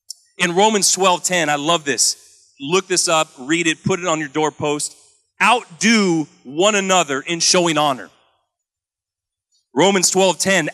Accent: American